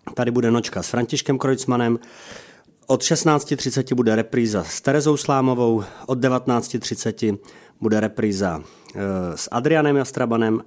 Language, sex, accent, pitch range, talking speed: Czech, male, native, 95-130 Hz, 120 wpm